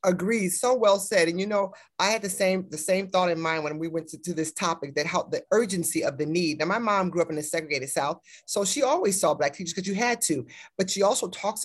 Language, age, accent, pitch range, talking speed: English, 30-49, American, 160-200 Hz, 275 wpm